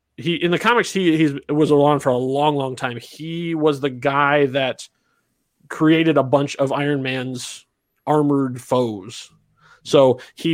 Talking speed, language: 160 wpm, English